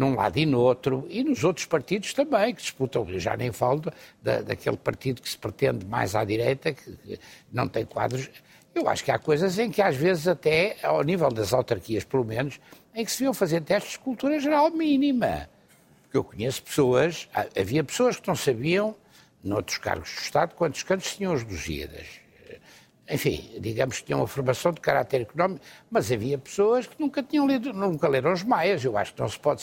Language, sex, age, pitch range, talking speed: Portuguese, male, 60-79, 135-205 Hz, 205 wpm